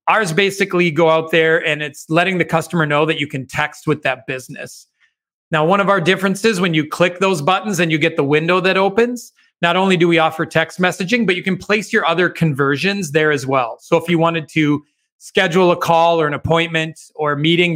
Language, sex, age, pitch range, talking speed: English, male, 30-49, 145-175 Hz, 225 wpm